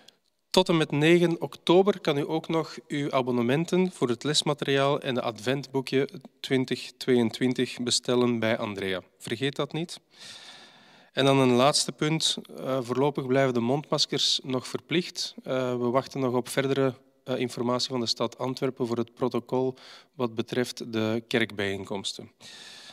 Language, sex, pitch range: Dutch, male, 120-145 Hz